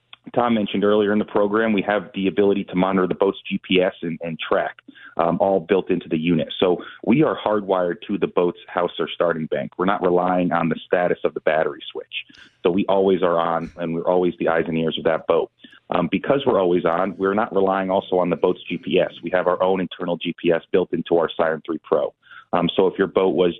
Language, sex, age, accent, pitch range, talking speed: English, male, 30-49, American, 85-100 Hz, 230 wpm